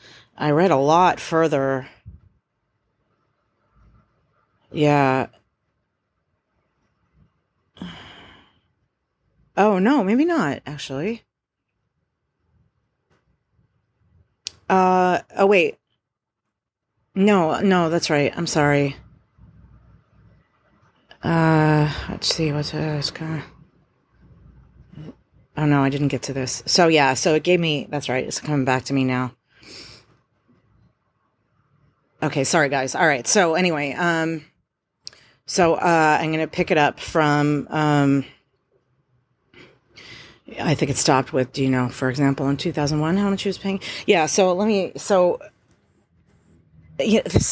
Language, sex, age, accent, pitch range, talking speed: English, female, 30-49, American, 135-195 Hz, 110 wpm